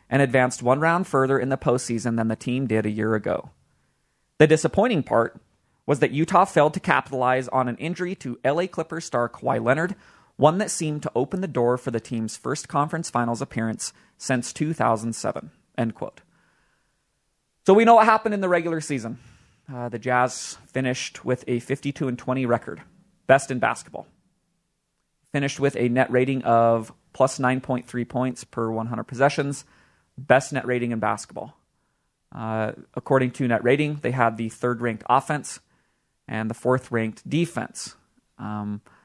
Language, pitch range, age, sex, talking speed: English, 120-150 Hz, 30-49, male, 160 wpm